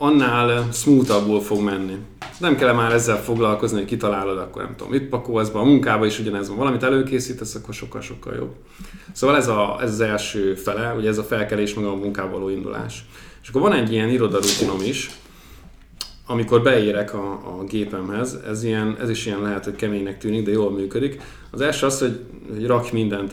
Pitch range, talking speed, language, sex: 100-120 Hz, 195 wpm, English, male